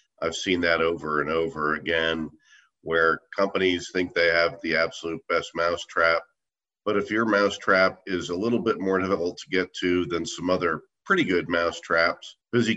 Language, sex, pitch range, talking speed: English, male, 80-95 Hz, 185 wpm